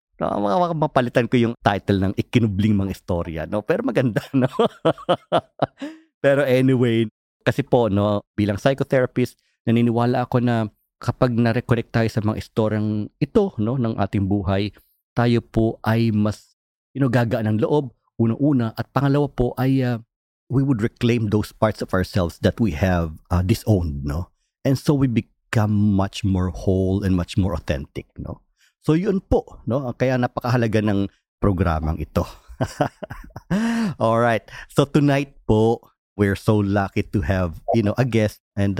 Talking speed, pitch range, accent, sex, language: 155 wpm, 100-130 Hz, native, male, Filipino